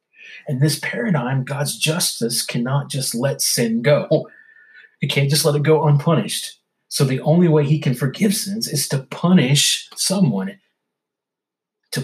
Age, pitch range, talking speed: 30-49, 135-200 Hz, 150 wpm